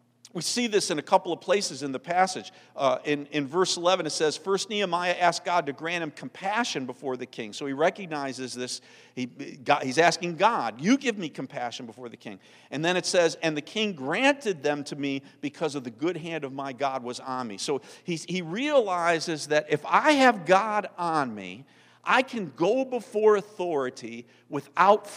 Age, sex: 50-69, male